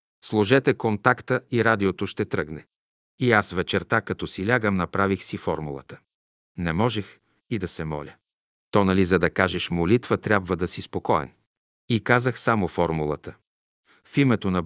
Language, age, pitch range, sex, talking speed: Bulgarian, 50-69, 90-120 Hz, male, 155 wpm